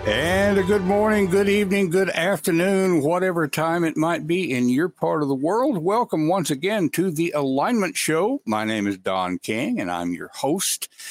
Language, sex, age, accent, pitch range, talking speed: English, male, 60-79, American, 100-150 Hz, 190 wpm